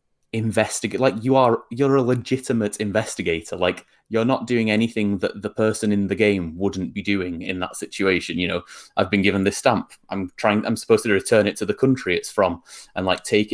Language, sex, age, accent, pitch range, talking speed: English, male, 20-39, British, 90-110 Hz, 210 wpm